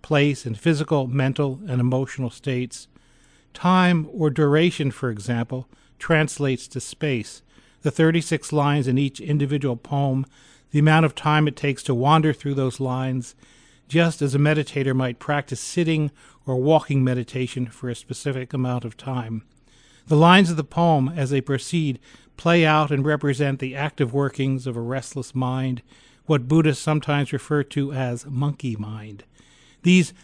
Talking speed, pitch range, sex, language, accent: 155 wpm, 130-155 Hz, male, English, American